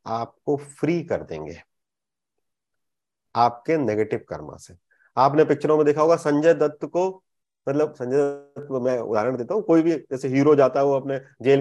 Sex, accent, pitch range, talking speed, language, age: male, native, 130-170 Hz, 170 wpm, Hindi, 30-49